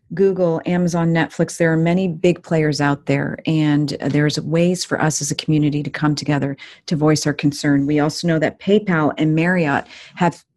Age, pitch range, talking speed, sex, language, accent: 40-59, 150-175 Hz, 185 wpm, female, English, American